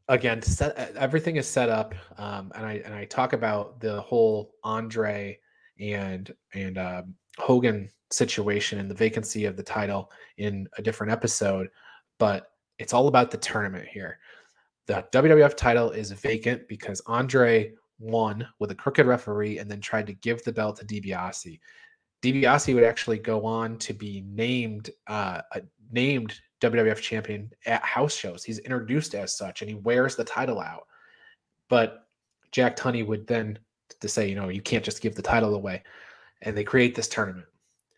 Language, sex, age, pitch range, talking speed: English, male, 20-39, 105-120 Hz, 170 wpm